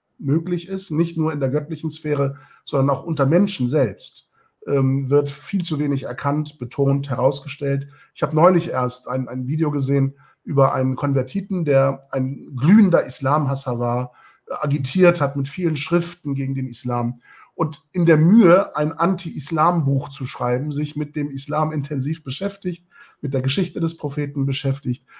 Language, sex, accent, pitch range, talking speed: German, male, German, 130-155 Hz, 155 wpm